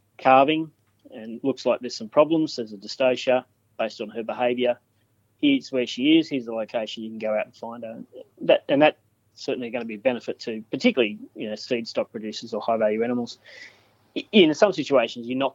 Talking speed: 210 wpm